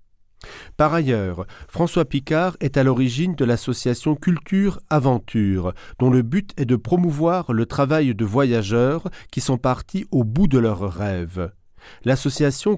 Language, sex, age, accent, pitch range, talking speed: French, male, 40-59, French, 115-150 Hz, 135 wpm